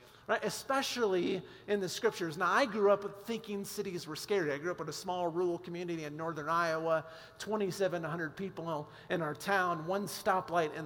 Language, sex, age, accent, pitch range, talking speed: English, male, 40-59, American, 170-205 Hz, 175 wpm